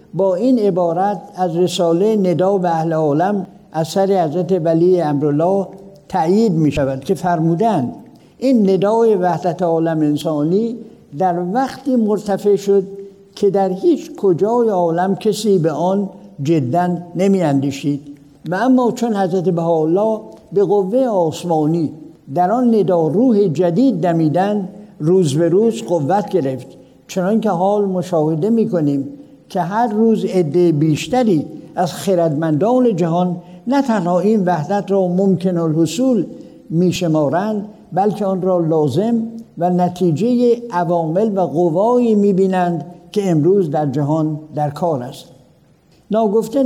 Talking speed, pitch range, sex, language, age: 125 wpm, 170-215 Hz, male, Persian, 60-79